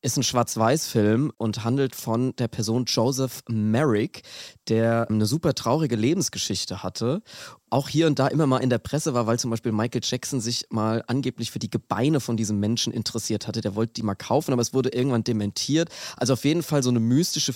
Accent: German